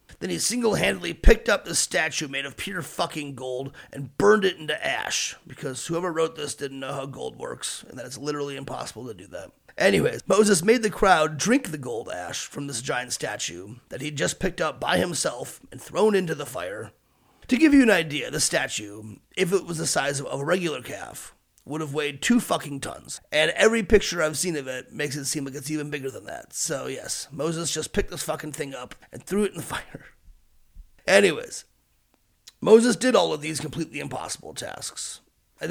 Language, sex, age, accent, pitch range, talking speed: English, male, 30-49, American, 135-180 Hz, 205 wpm